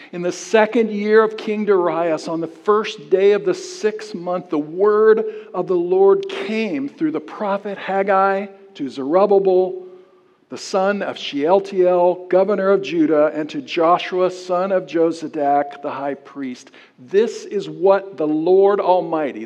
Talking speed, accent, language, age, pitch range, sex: 150 wpm, American, English, 60-79, 175-230 Hz, male